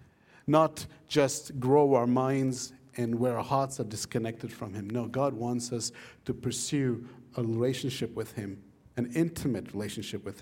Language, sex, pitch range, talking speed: English, male, 115-145 Hz, 155 wpm